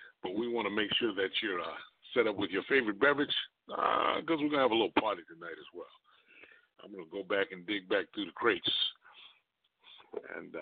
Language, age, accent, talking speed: English, 50-69, American, 220 wpm